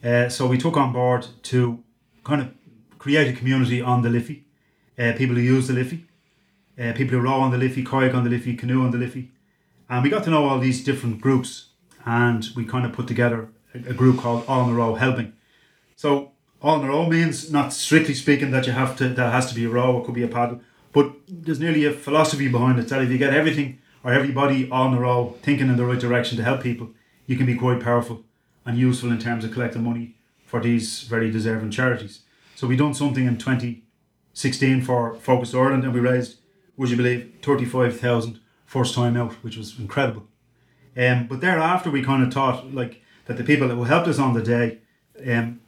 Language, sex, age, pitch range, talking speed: English, male, 30-49, 120-135 Hz, 215 wpm